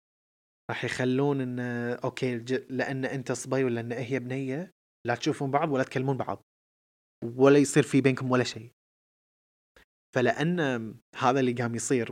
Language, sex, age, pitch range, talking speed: Arabic, male, 20-39, 115-140 Hz, 140 wpm